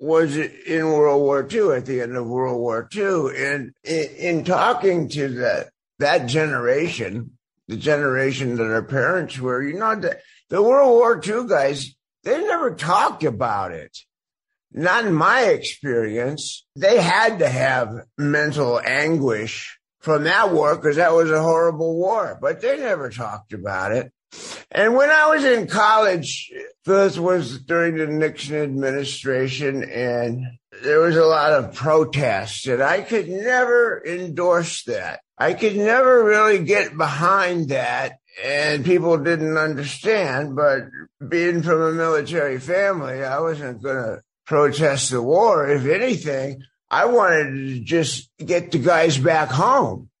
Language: English